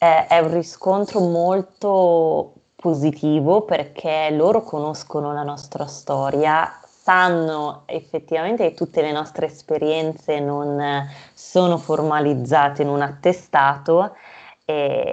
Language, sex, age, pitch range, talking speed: Italian, female, 20-39, 150-175 Hz, 100 wpm